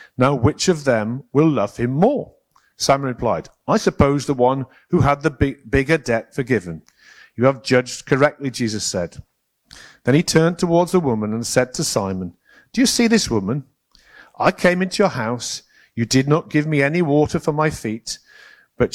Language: English